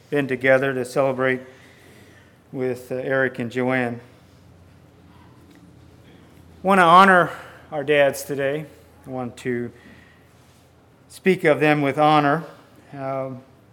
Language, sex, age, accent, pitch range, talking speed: English, male, 40-59, American, 130-155 Hz, 110 wpm